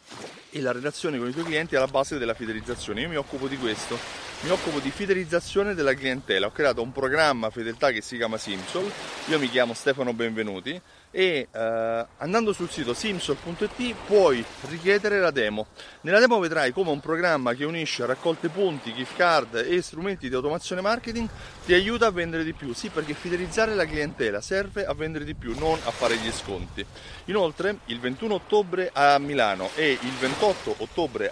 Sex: male